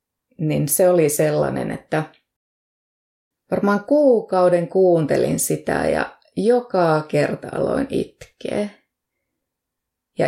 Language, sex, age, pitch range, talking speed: Finnish, female, 20-39, 155-210 Hz, 90 wpm